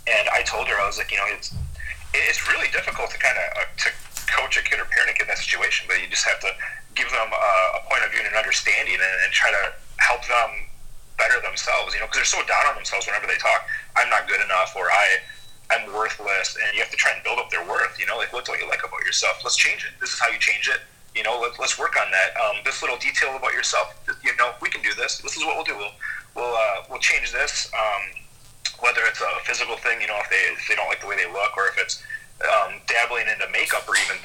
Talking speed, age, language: 270 wpm, 30-49, English